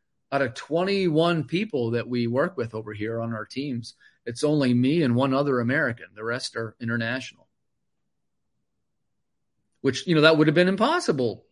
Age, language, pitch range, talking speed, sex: 40-59, English, 120-160 Hz, 165 wpm, male